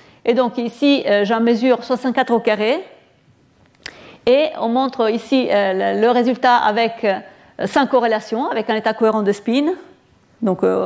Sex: female